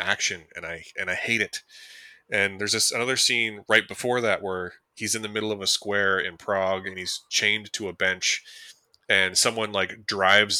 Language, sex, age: English, male, 20-39